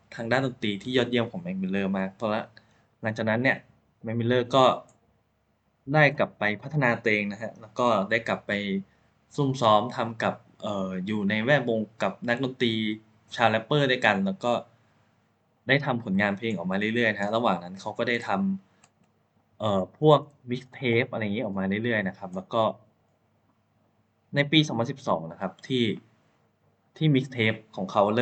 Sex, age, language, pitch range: male, 20-39, Thai, 105-125 Hz